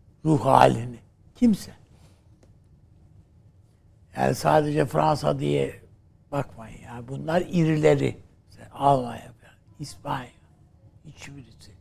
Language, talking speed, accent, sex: Turkish, 80 wpm, native, male